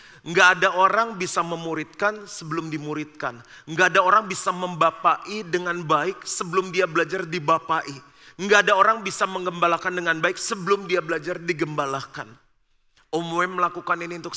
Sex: male